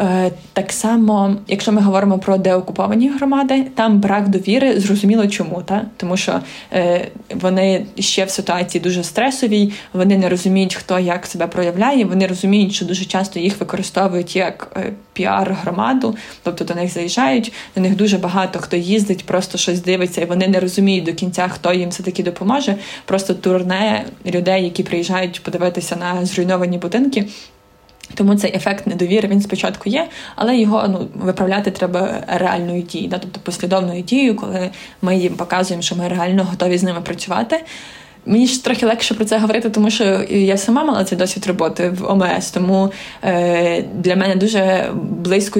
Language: Ukrainian